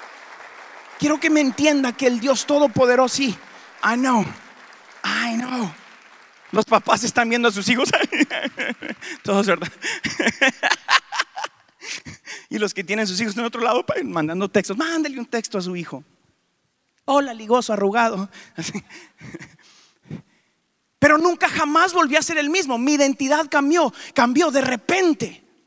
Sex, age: male, 30-49